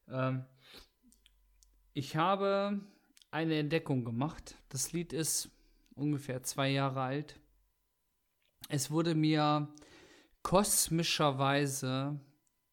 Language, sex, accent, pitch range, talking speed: German, male, German, 130-165 Hz, 75 wpm